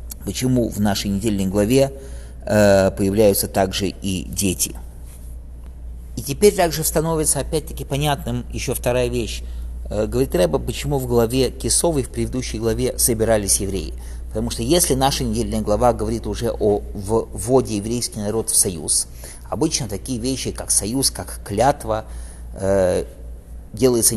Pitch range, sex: 100-125 Hz, male